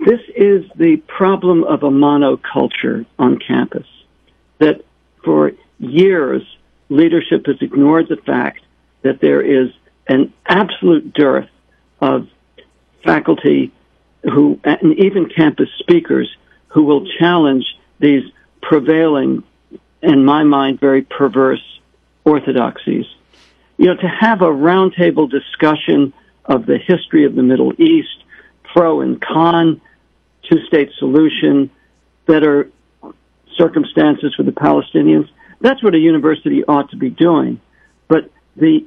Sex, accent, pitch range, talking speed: male, American, 130-175 Hz, 115 wpm